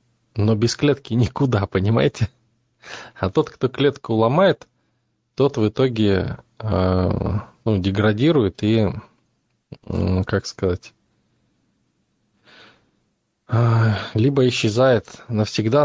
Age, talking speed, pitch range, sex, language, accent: 20-39, 80 wpm, 100-115 Hz, male, Russian, native